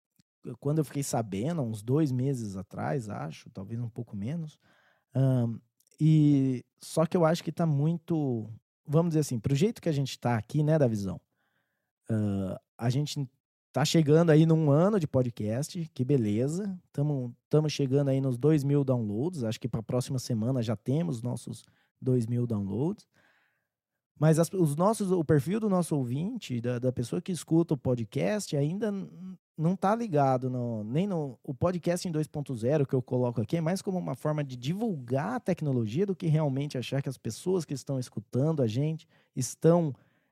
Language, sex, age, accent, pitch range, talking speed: Portuguese, male, 20-39, Brazilian, 125-160 Hz, 165 wpm